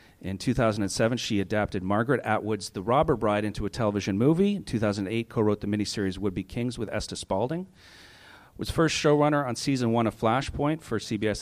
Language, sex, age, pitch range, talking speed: English, male, 40-59, 100-125 Hz, 180 wpm